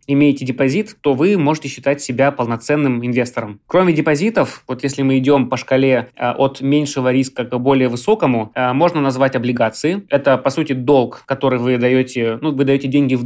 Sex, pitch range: male, 125-155 Hz